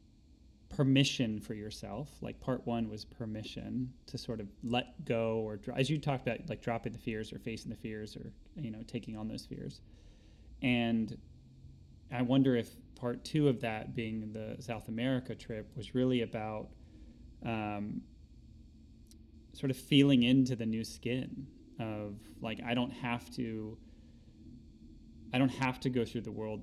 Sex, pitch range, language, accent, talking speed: male, 105-125 Hz, English, American, 160 wpm